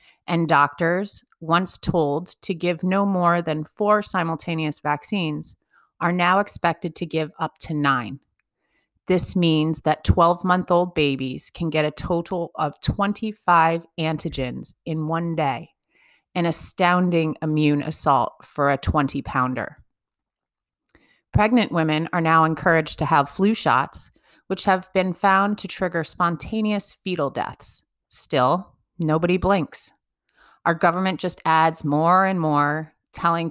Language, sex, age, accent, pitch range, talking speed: English, female, 30-49, American, 150-180 Hz, 125 wpm